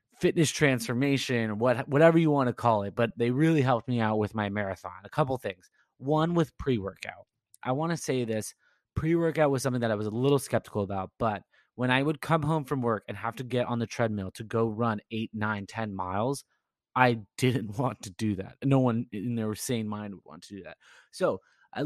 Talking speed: 220 wpm